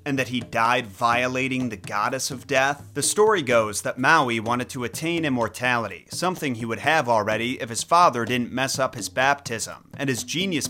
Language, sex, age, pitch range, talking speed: English, male, 30-49, 120-145 Hz, 190 wpm